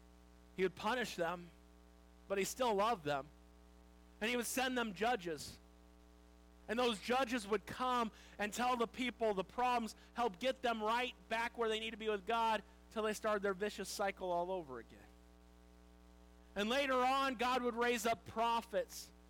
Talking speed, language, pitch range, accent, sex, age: 170 wpm, English, 205-255 Hz, American, male, 40-59